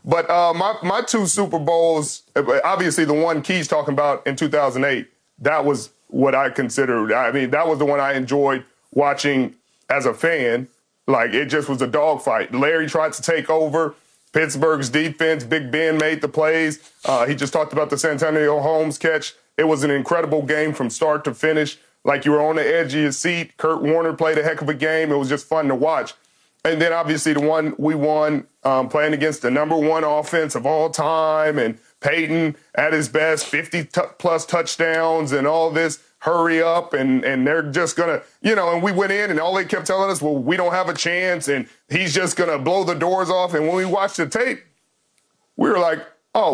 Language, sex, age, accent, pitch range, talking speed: English, male, 40-59, American, 150-170 Hz, 210 wpm